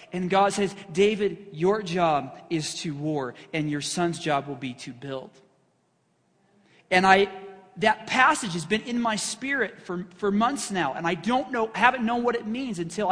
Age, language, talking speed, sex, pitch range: 40-59, English, 185 wpm, male, 160-215 Hz